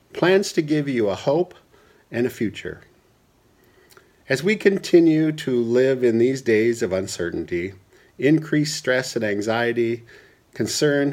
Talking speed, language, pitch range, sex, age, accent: 130 wpm, English, 110-160 Hz, male, 50-69, American